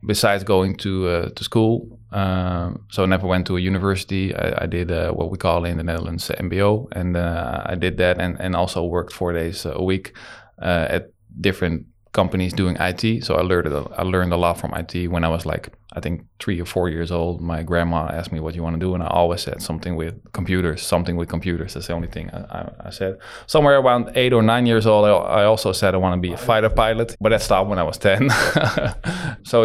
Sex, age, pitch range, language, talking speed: male, 20-39, 85-105 Hz, English, 235 wpm